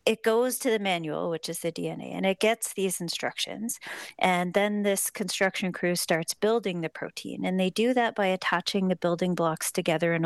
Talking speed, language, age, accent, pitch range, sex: 200 wpm, English, 40-59, American, 170-205 Hz, female